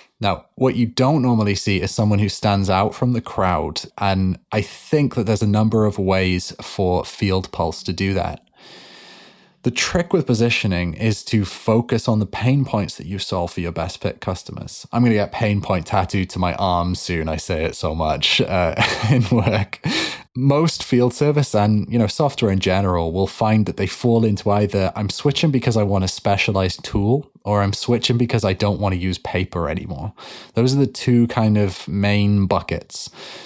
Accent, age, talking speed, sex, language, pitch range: British, 20-39, 195 wpm, male, English, 95-115 Hz